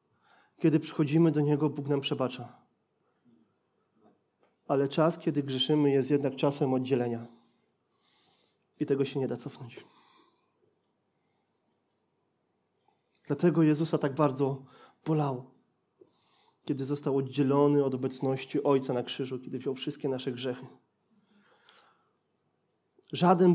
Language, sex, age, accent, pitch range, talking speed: Polish, male, 30-49, native, 135-160 Hz, 100 wpm